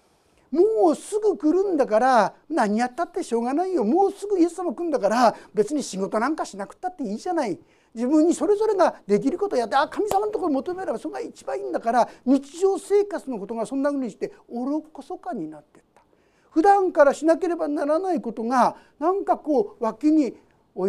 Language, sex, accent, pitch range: Japanese, male, native, 220-330 Hz